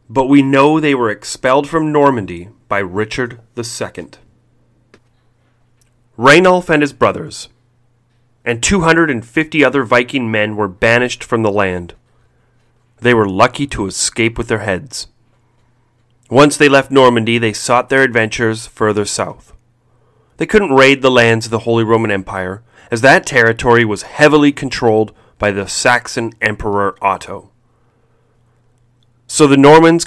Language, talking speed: English, 135 wpm